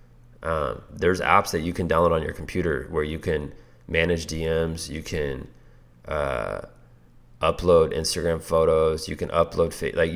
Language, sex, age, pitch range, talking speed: English, male, 20-39, 80-120 Hz, 150 wpm